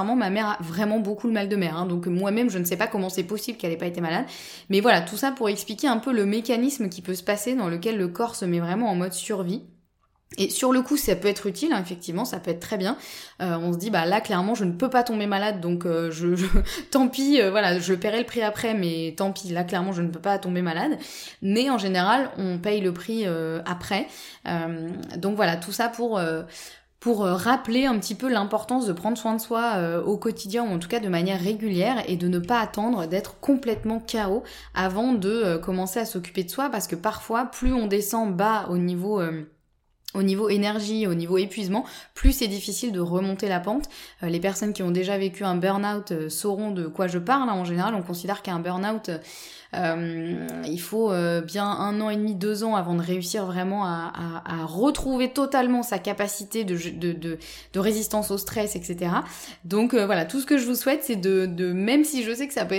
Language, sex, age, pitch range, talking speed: French, female, 20-39, 180-230 Hz, 235 wpm